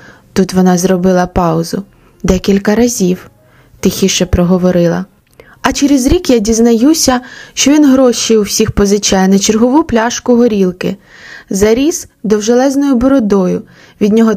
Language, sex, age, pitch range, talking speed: Ukrainian, female, 20-39, 190-245 Hz, 120 wpm